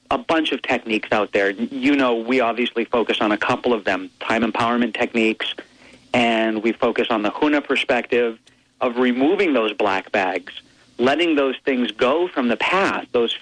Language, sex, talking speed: English, male, 175 wpm